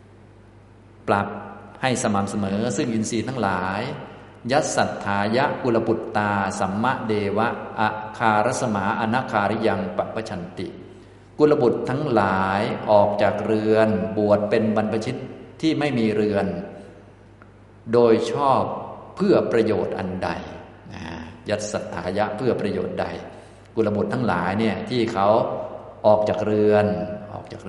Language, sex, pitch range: Thai, male, 100-110 Hz